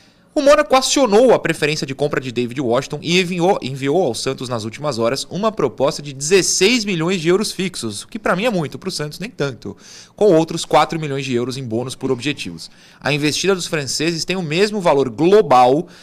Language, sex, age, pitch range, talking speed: Portuguese, male, 30-49, 130-175 Hz, 210 wpm